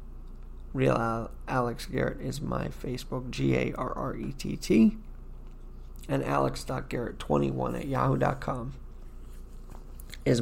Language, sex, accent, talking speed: English, male, American, 70 wpm